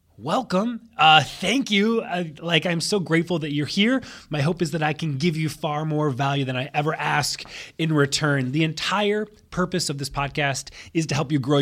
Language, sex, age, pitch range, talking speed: English, male, 20-39, 135-180 Hz, 205 wpm